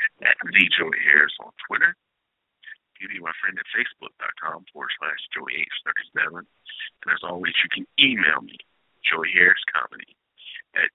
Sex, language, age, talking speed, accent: male, English, 50-69, 140 wpm, American